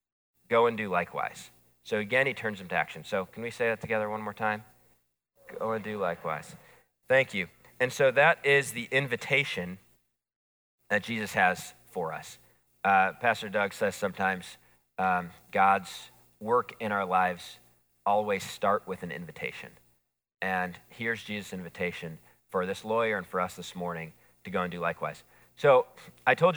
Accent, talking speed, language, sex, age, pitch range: American, 165 wpm, English, male, 40-59, 90-120 Hz